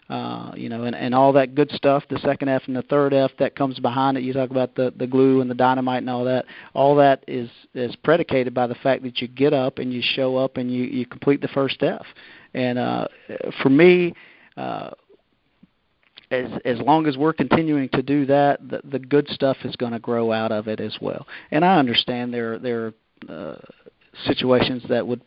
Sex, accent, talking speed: male, American, 215 wpm